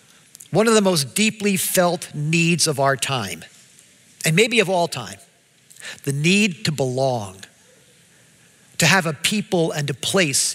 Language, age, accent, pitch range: English, 50-69, American, 135-175 Hz